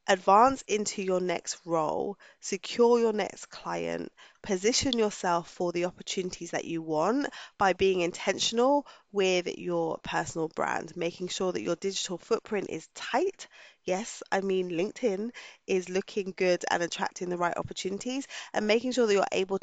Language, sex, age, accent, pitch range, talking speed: English, female, 20-39, British, 175-215 Hz, 155 wpm